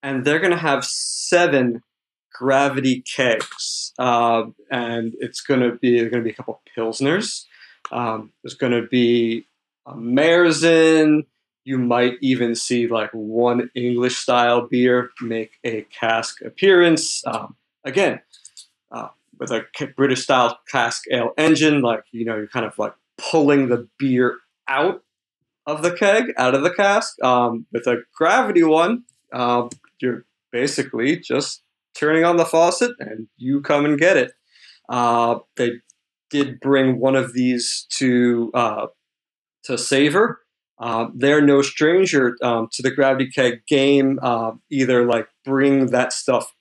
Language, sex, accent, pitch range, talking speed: English, male, American, 120-145 Hz, 145 wpm